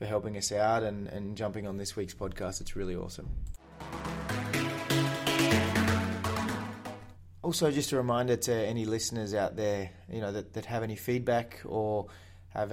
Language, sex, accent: English, male, Australian